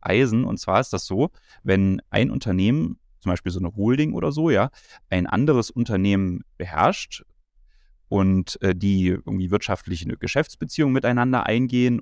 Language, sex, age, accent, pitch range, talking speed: German, male, 30-49, German, 95-125 Hz, 140 wpm